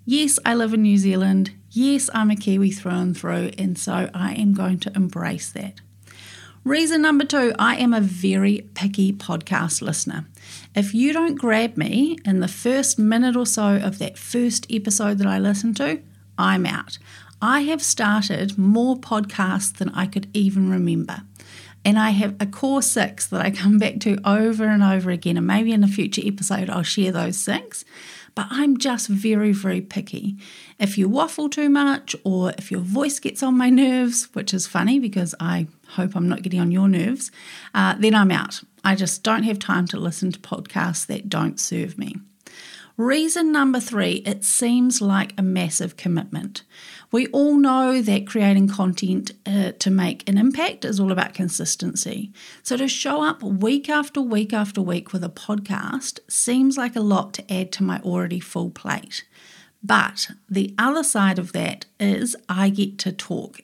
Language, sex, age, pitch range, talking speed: English, female, 40-59, 190-240 Hz, 180 wpm